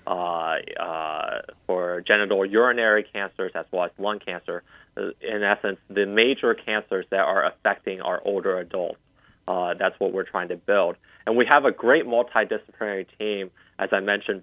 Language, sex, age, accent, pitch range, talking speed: English, male, 30-49, American, 95-105 Hz, 160 wpm